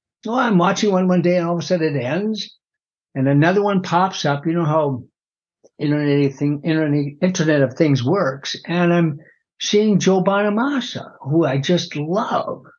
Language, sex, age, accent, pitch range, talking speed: English, male, 60-79, American, 145-215 Hz, 165 wpm